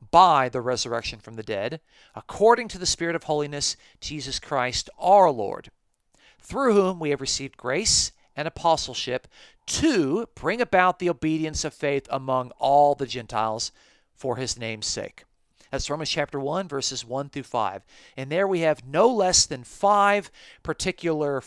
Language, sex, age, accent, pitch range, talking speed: English, male, 50-69, American, 125-170 Hz, 155 wpm